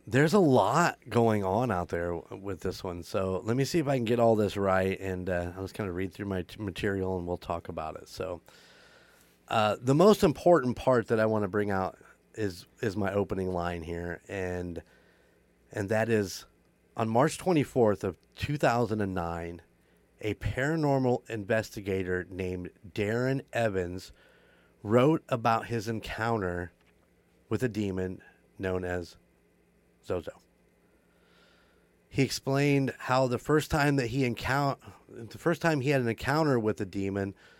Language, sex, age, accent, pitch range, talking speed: English, male, 30-49, American, 90-120 Hz, 155 wpm